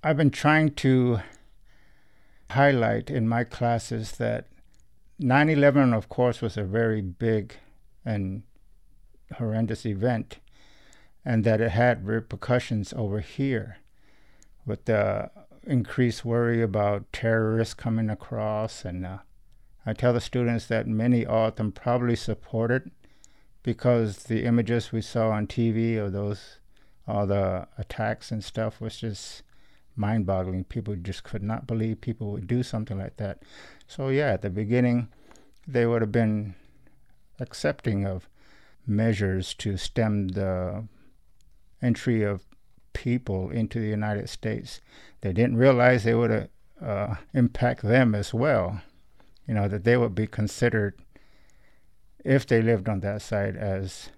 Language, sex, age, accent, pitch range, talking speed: English, male, 50-69, American, 105-120 Hz, 135 wpm